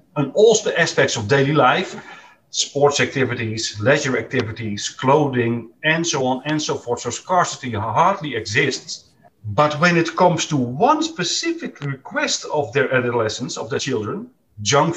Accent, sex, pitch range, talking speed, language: Dutch, male, 130-185 Hz, 150 wpm, English